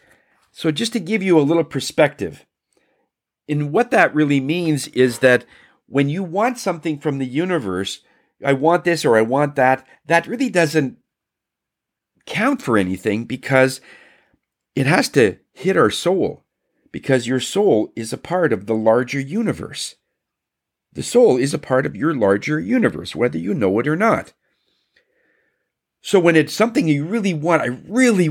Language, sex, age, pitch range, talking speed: English, male, 50-69, 115-165 Hz, 160 wpm